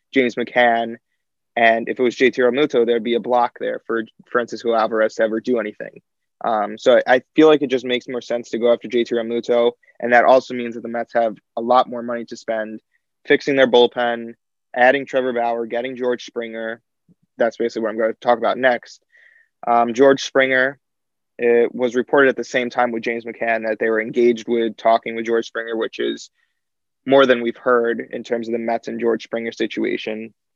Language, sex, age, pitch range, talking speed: English, male, 20-39, 115-125 Hz, 205 wpm